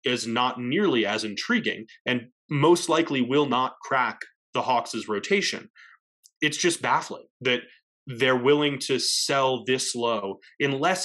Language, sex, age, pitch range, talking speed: English, male, 20-39, 115-145 Hz, 135 wpm